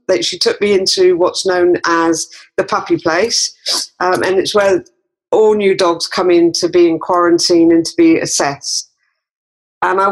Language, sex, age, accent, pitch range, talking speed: English, female, 40-59, British, 175-220 Hz, 180 wpm